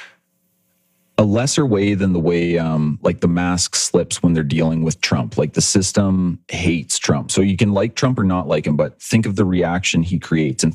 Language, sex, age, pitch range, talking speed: English, male, 30-49, 80-105 Hz, 210 wpm